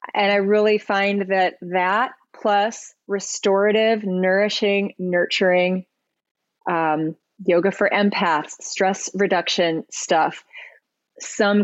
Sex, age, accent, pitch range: female, 30-49, American, 180-205 Hz